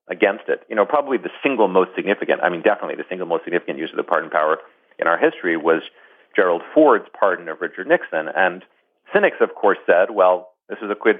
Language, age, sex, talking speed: English, 40-59, male, 220 wpm